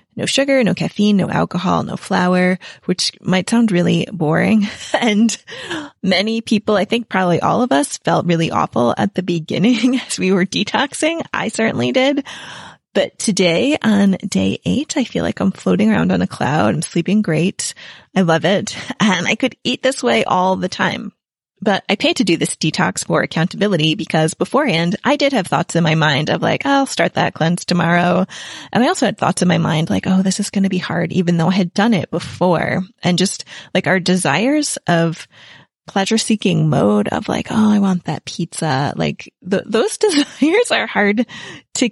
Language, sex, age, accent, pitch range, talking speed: English, female, 20-39, American, 175-230 Hz, 190 wpm